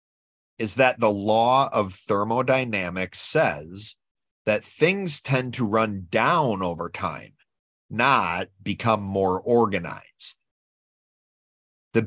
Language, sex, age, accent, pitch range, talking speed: English, male, 30-49, American, 100-130 Hz, 100 wpm